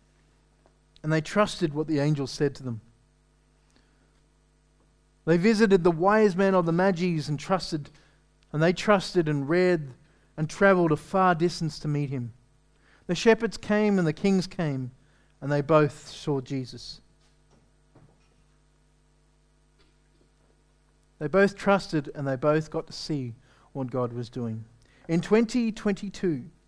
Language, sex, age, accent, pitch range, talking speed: English, male, 40-59, Australian, 145-185 Hz, 135 wpm